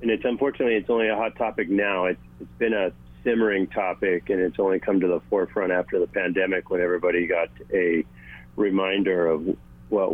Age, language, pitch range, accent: 40-59, English, 85-115 Hz, American